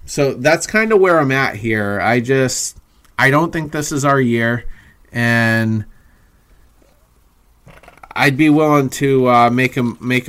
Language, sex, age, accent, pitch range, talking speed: English, male, 30-49, American, 120-145 Hz, 150 wpm